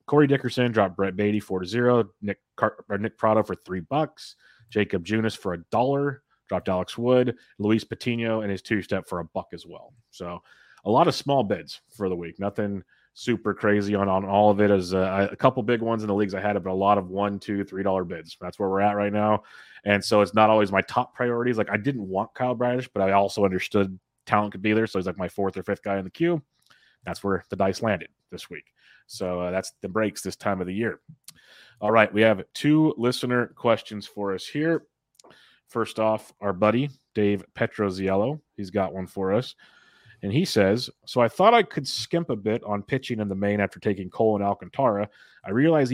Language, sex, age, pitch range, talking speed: English, male, 30-49, 100-120 Hz, 225 wpm